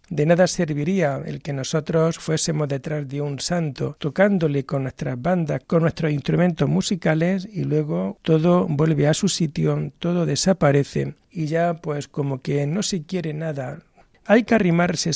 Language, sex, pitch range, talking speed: Spanish, male, 145-175 Hz, 160 wpm